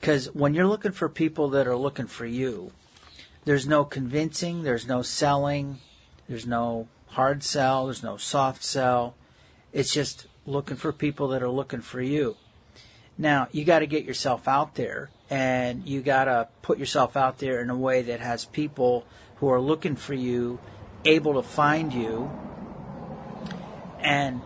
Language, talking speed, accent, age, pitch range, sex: English, 165 wpm, American, 50-69, 125-145 Hz, male